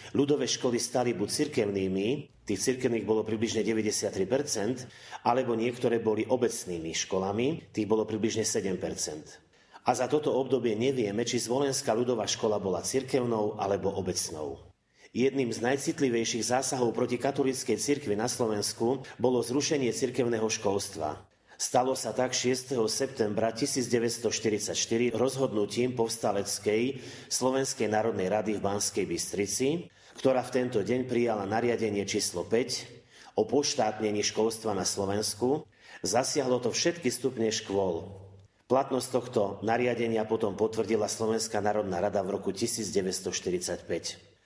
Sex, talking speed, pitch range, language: male, 120 wpm, 105-125 Hz, Slovak